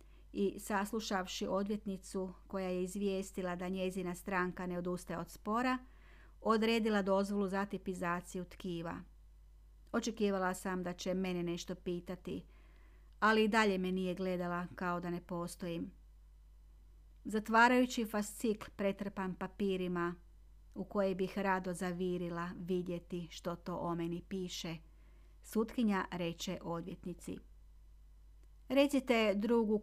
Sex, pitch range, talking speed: female, 170-220 Hz, 110 wpm